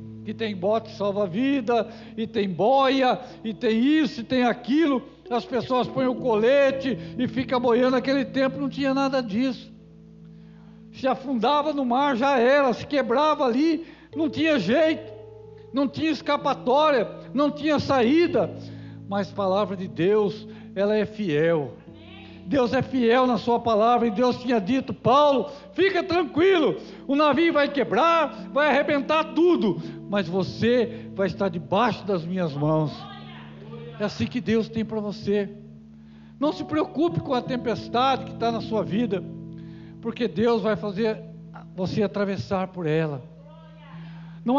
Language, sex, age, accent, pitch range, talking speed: Portuguese, male, 60-79, Brazilian, 195-270 Hz, 145 wpm